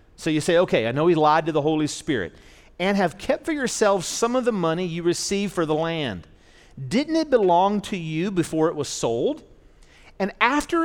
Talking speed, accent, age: 205 wpm, American, 40-59